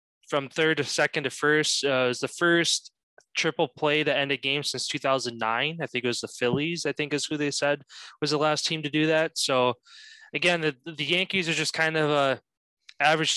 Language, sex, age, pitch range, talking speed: English, male, 20-39, 130-155 Hz, 215 wpm